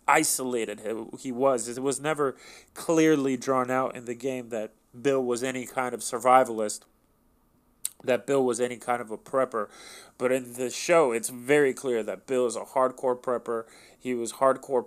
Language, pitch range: English, 115-130 Hz